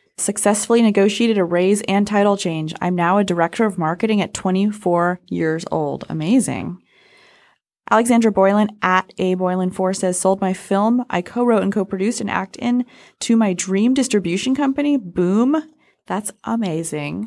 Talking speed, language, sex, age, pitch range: 150 wpm, English, female, 20-39, 165-225 Hz